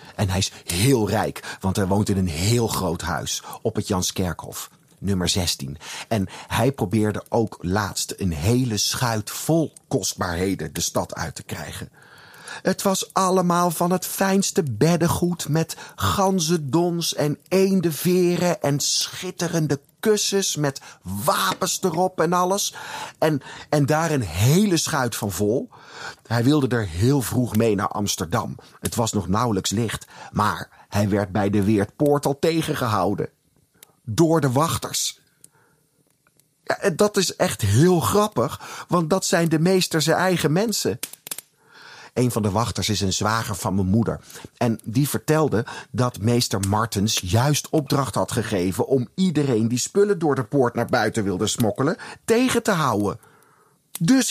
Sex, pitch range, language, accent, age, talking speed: male, 105-170 Hz, Dutch, Dutch, 40-59, 145 wpm